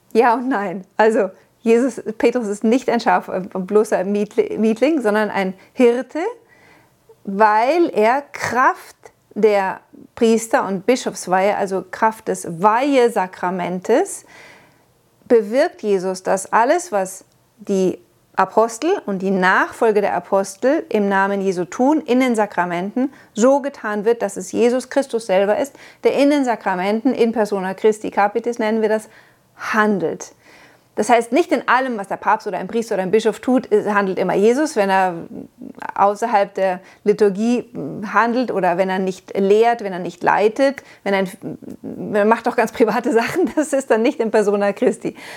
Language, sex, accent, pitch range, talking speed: German, female, German, 200-255 Hz, 150 wpm